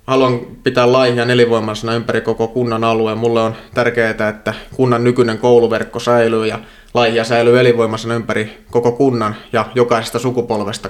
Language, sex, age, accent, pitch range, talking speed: Finnish, male, 20-39, native, 110-120 Hz, 145 wpm